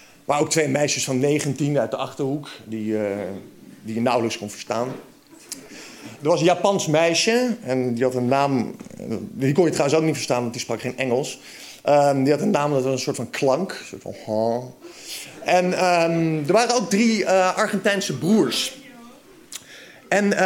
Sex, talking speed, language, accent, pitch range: male, 190 wpm, Dutch, Dutch, 130-200 Hz